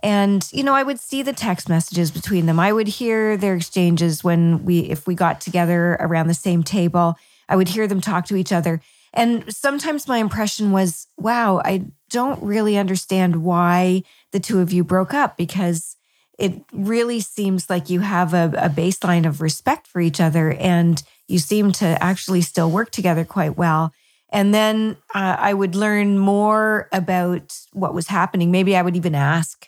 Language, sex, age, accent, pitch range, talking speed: English, female, 40-59, American, 170-205 Hz, 185 wpm